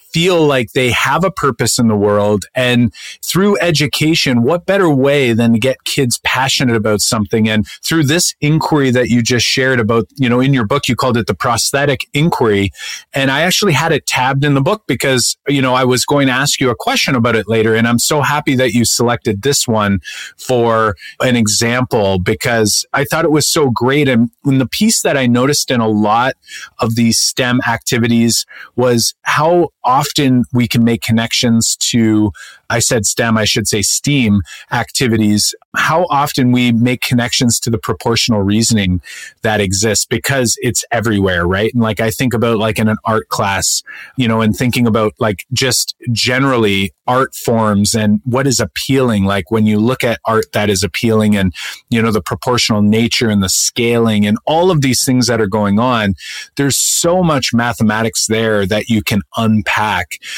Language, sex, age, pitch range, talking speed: English, male, 40-59, 110-135 Hz, 190 wpm